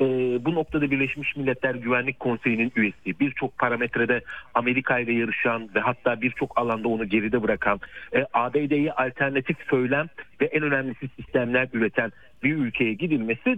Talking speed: 140 wpm